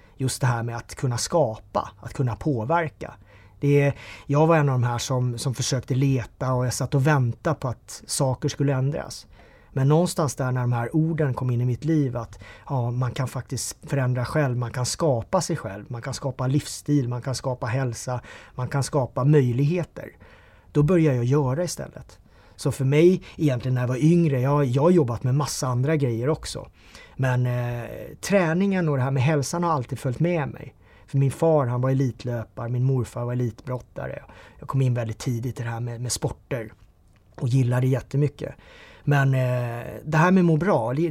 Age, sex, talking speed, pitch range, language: 30-49, male, 195 wpm, 125-150 Hz, Swedish